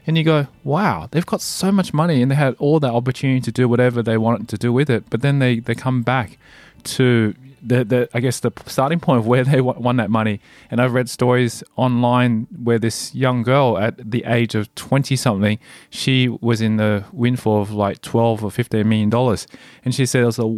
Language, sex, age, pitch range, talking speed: English, male, 20-39, 115-135 Hz, 220 wpm